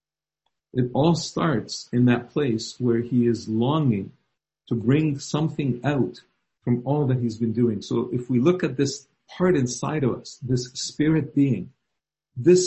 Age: 50-69